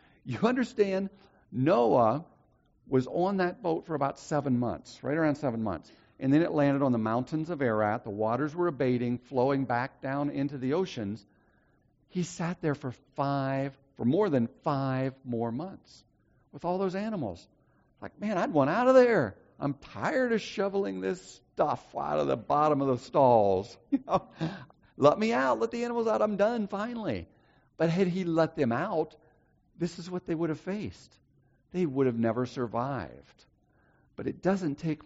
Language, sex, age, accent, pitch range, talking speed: English, male, 60-79, American, 115-160 Hz, 175 wpm